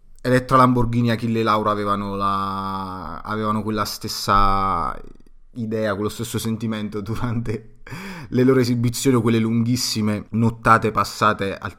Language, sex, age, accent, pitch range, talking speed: Italian, male, 30-49, native, 95-110 Hz, 120 wpm